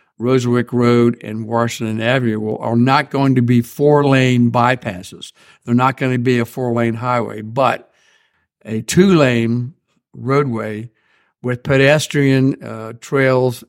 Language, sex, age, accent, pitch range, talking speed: English, male, 60-79, American, 115-130 Hz, 125 wpm